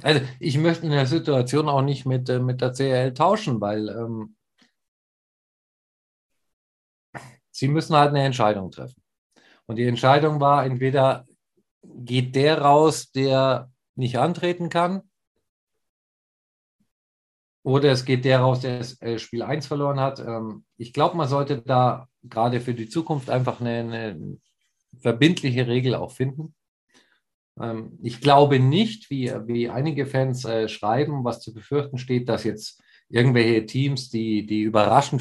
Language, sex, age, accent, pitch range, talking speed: German, male, 50-69, German, 115-140 Hz, 135 wpm